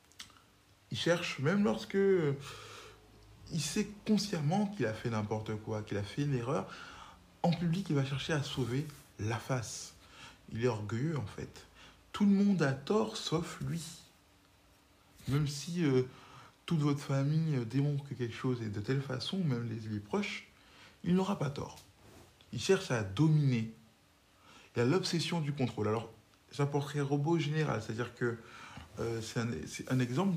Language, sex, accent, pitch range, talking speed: French, male, French, 110-150 Hz, 160 wpm